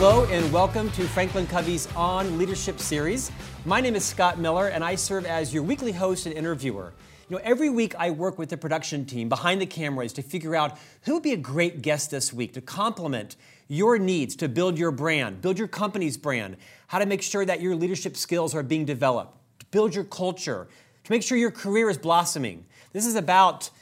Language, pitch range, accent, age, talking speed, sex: English, 145-195 Hz, American, 40-59, 210 wpm, male